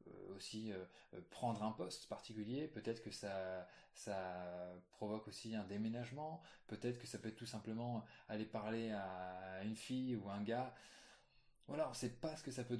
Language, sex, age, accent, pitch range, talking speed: French, male, 20-39, French, 100-120 Hz, 175 wpm